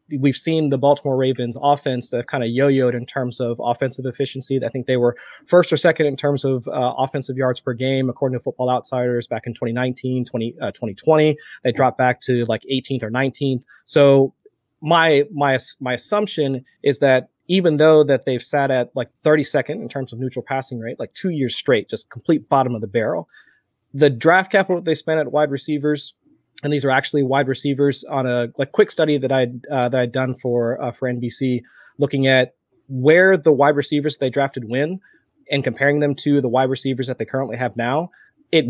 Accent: American